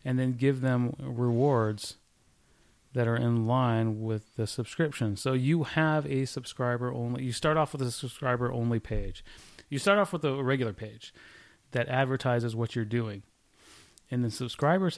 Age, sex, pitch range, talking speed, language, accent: 30-49, male, 115-135 Hz, 155 wpm, English, American